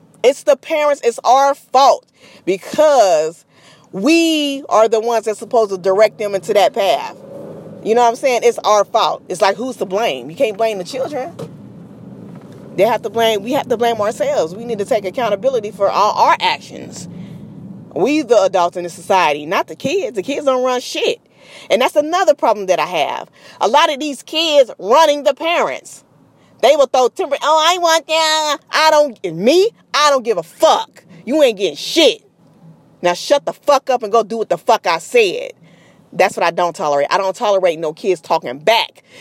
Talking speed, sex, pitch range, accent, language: 200 wpm, female, 195-300 Hz, American, English